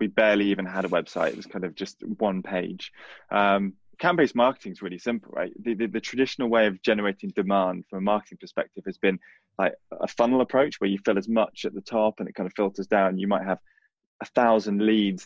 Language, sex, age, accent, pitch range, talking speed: English, male, 20-39, British, 100-115 Hz, 230 wpm